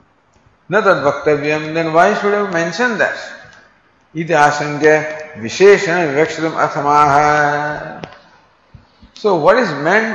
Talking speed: 105 wpm